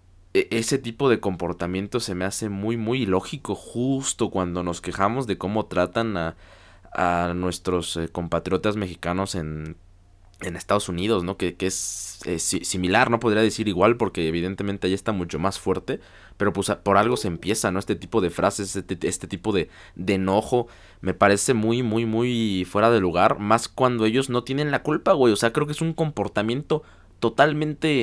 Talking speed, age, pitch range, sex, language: 180 wpm, 20-39, 90-115 Hz, male, Spanish